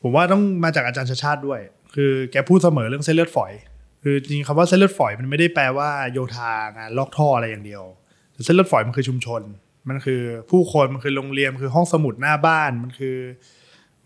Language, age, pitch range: Thai, 20-39, 125-155 Hz